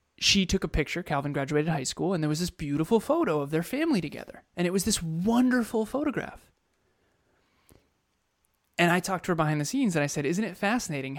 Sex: male